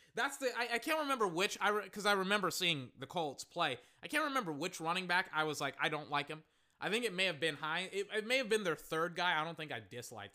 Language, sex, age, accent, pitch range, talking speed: English, male, 20-39, American, 135-205 Hz, 285 wpm